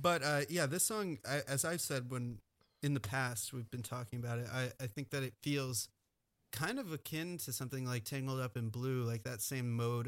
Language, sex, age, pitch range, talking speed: English, male, 30-49, 115-135 Hz, 225 wpm